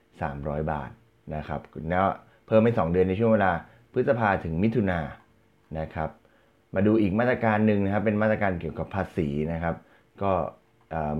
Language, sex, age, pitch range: Thai, male, 20-39, 80-105 Hz